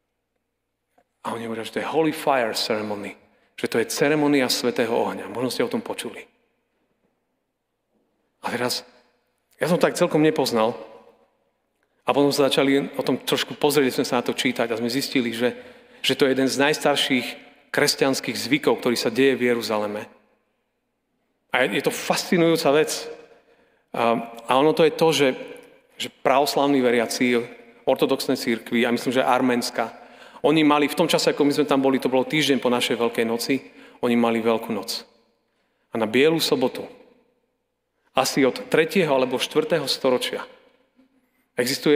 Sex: male